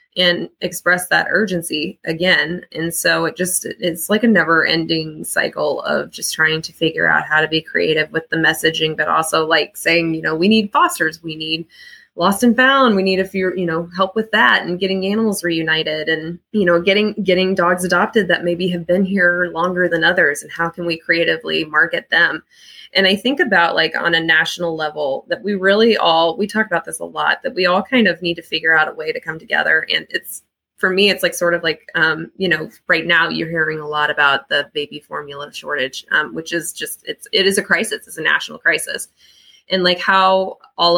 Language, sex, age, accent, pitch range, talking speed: English, female, 20-39, American, 160-190 Hz, 220 wpm